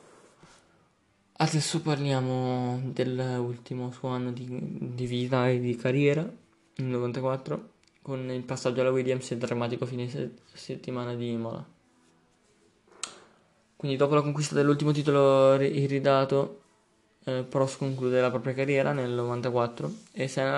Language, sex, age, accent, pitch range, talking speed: Italian, male, 20-39, native, 120-135 Hz, 125 wpm